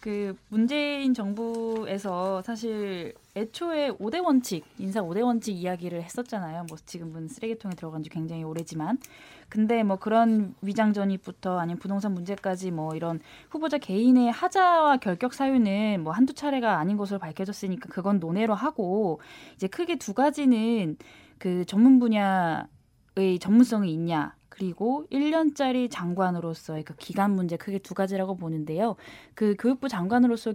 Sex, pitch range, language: female, 180-245 Hz, Korean